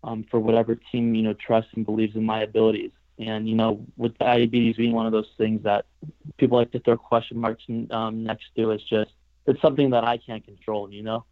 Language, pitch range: English, 110-120 Hz